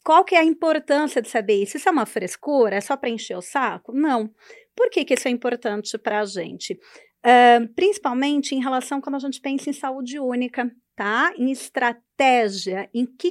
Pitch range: 225-320 Hz